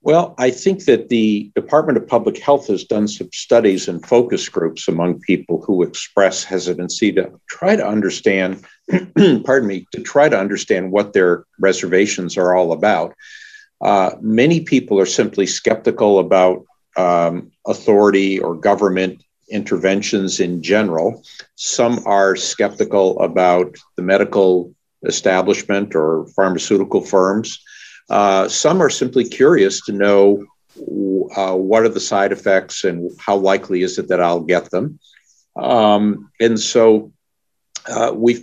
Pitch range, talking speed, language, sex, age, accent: 90-110 Hz, 135 wpm, English, male, 50-69, American